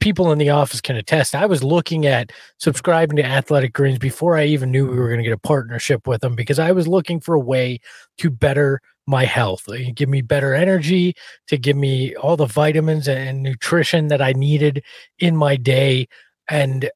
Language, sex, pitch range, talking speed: English, male, 135-165 Hz, 200 wpm